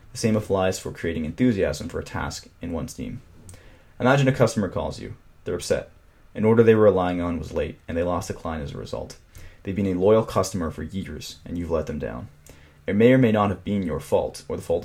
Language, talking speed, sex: English, 240 wpm, male